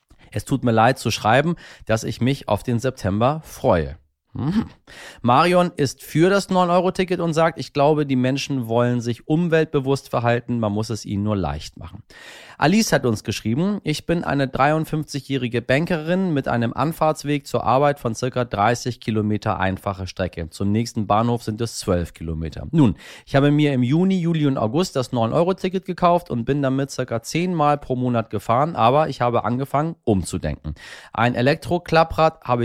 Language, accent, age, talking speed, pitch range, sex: German, German, 30-49, 165 wpm, 110-150 Hz, male